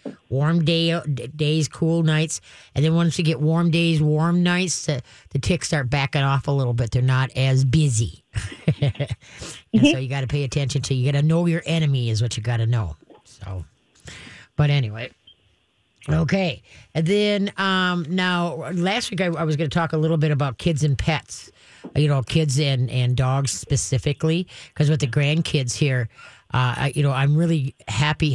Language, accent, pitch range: English, American, 130-160 Hz